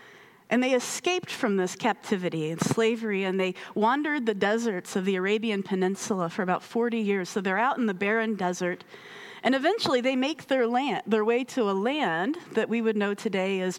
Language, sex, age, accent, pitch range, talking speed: English, female, 30-49, American, 190-250 Hz, 190 wpm